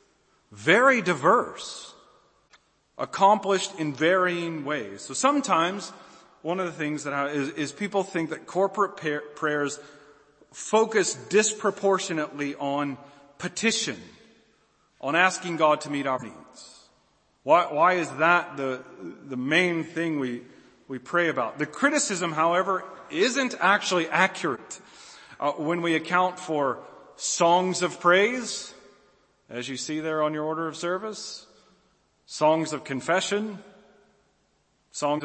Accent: American